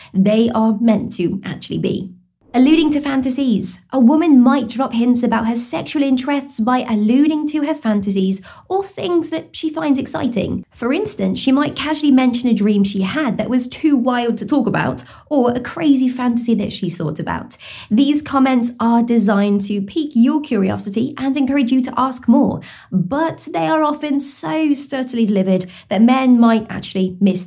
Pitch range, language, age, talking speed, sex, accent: 210-275 Hz, English, 20-39, 175 wpm, female, British